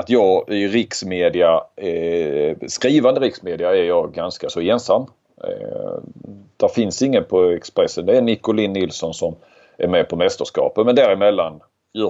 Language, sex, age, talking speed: Swedish, male, 30-49, 150 wpm